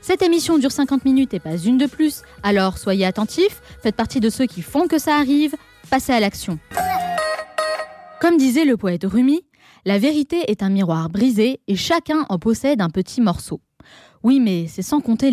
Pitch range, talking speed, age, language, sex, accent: 200-285 Hz, 190 wpm, 20-39, French, female, French